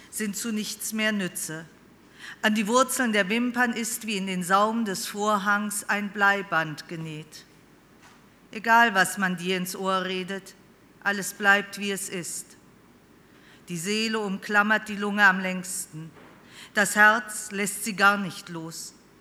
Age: 50-69